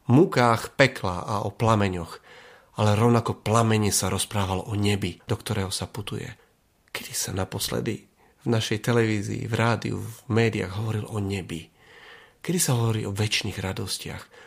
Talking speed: 145 wpm